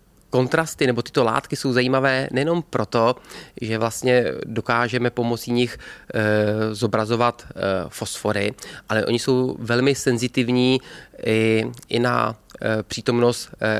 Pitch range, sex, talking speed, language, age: 115-130 Hz, male, 100 wpm, Czech, 30-49